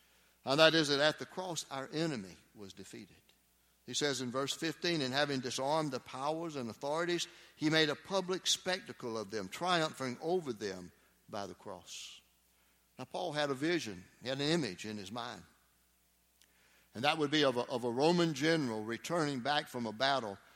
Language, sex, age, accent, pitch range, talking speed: English, male, 60-79, American, 115-150 Hz, 185 wpm